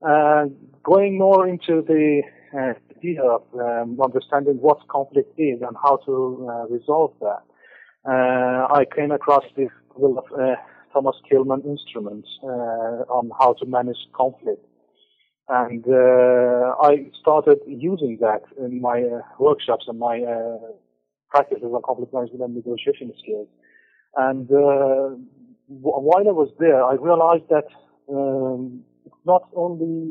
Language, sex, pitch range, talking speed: English, male, 125-155 Hz, 140 wpm